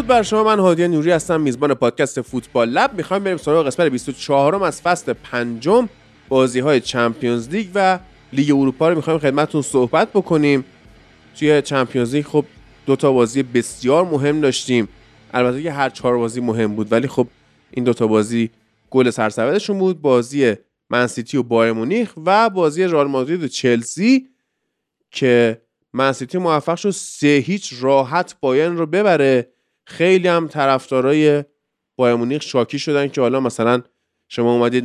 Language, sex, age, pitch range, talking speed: Persian, male, 20-39, 120-170 Hz, 150 wpm